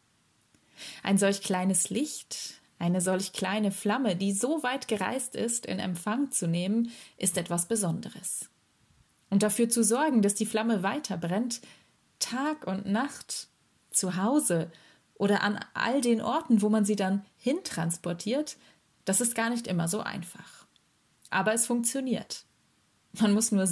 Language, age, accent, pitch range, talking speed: German, 30-49, German, 185-230 Hz, 140 wpm